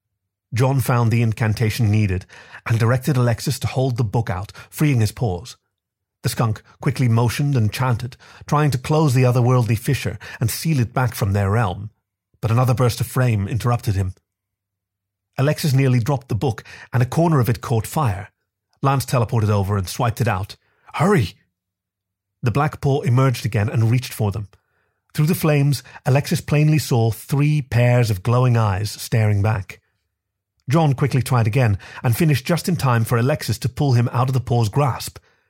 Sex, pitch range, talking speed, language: male, 100-130 Hz, 175 wpm, English